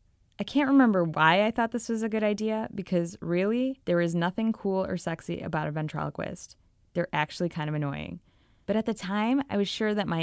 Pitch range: 155-190 Hz